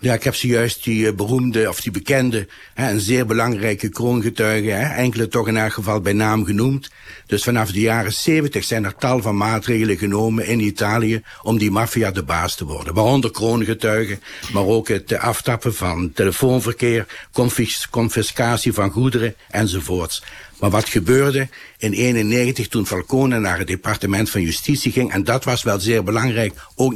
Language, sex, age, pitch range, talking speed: Dutch, male, 60-79, 105-125 Hz, 165 wpm